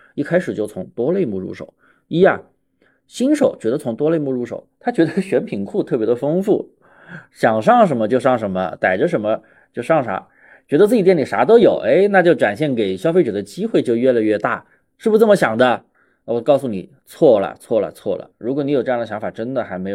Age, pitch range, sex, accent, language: 20-39, 120-170 Hz, male, native, Chinese